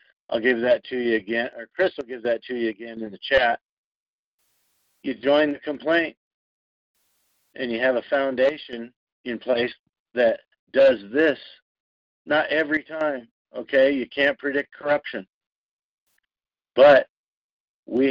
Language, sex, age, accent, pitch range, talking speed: English, male, 50-69, American, 115-140 Hz, 135 wpm